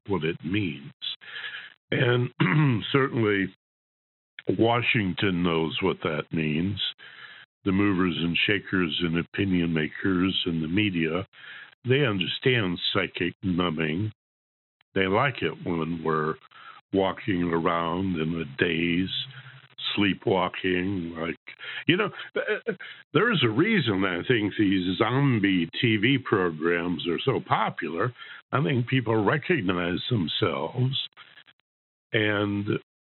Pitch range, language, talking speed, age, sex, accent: 90-130 Hz, English, 105 wpm, 60-79, male, American